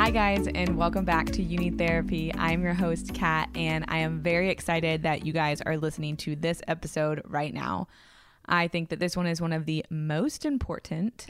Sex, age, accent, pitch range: female, 20-39, American, 165-190 Hz